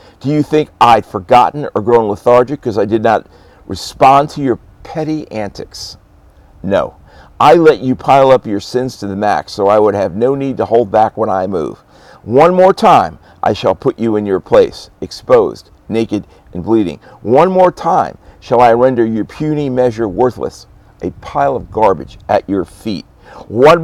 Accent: American